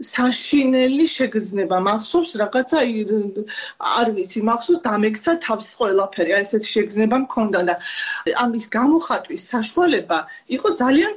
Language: Arabic